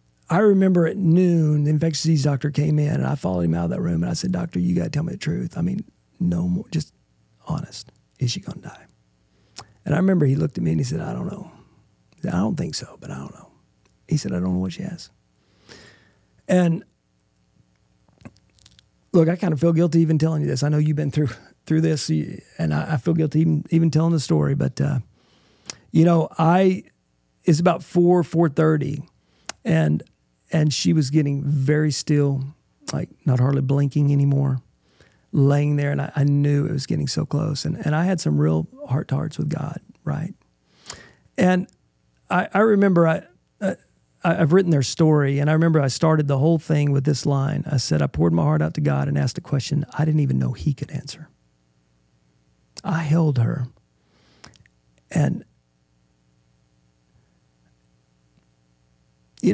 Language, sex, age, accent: English, male, 40-59, American